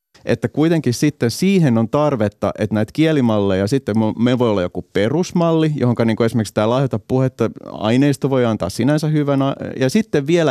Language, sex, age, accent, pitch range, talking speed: Finnish, male, 30-49, native, 110-135 Hz, 165 wpm